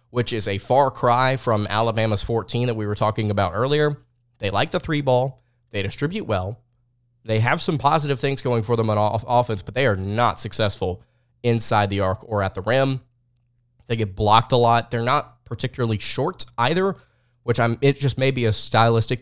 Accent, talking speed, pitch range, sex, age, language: American, 195 wpm, 105-125 Hz, male, 20-39, English